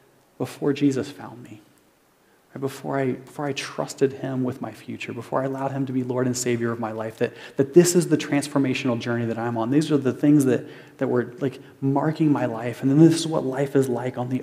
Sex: male